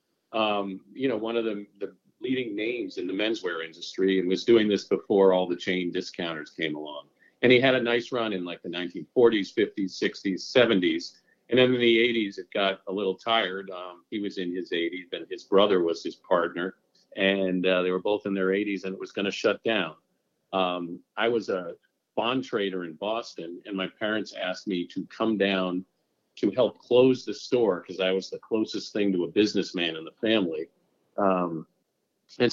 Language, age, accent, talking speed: English, 50-69, American, 200 wpm